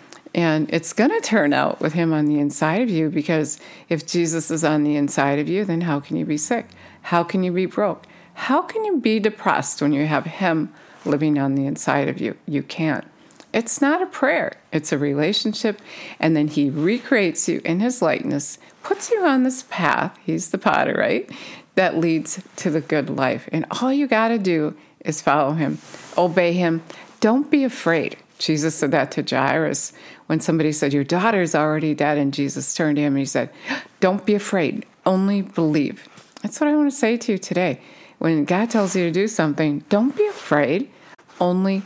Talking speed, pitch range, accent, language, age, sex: 200 wpm, 155-215 Hz, American, English, 50-69, female